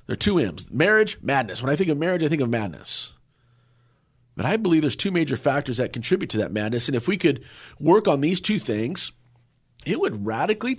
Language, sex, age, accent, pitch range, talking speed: English, male, 40-59, American, 115-150 Hz, 215 wpm